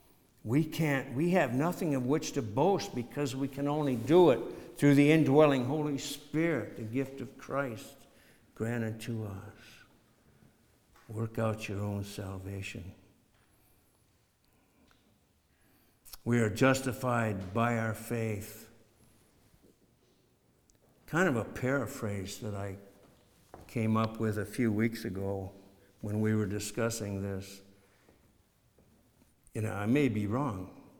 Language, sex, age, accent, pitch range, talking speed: English, male, 60-79, American, 110-140 Hz, 120 wpm